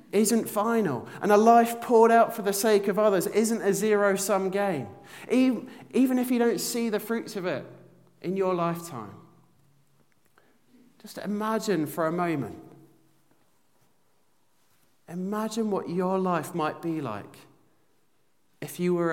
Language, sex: English, male